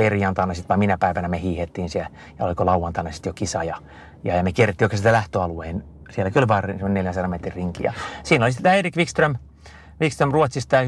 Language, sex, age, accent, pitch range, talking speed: Finnish, male, 30-49, native, 95-115 Hz, 205 wpm